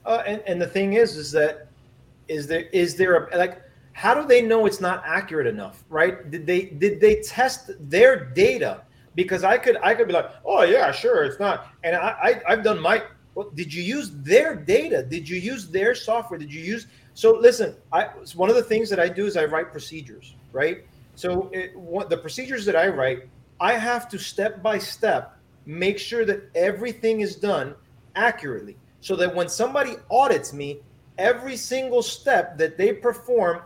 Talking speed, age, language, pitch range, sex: 190 wpm, 30-49, English, 150-230 Hz, male